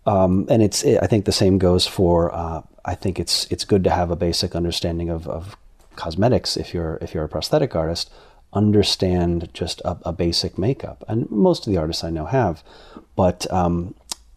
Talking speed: 190 wpm